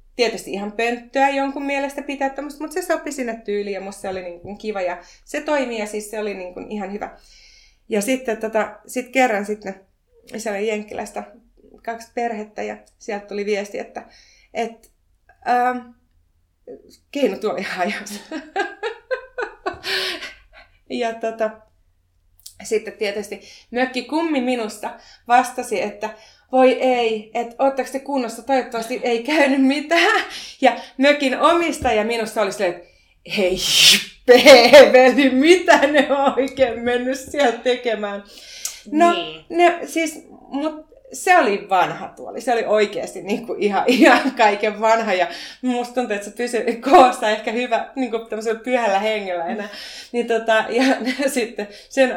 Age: 30-49